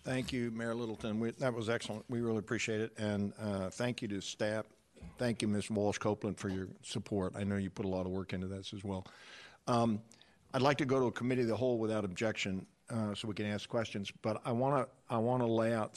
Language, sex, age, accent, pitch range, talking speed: English, male, 50-69, American, 100-115 Hz, 235 wpm